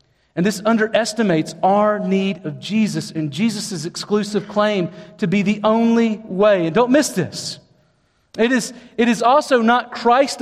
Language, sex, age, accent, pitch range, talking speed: English, male, 40-59, American, 185-245 Hz, 155 wpm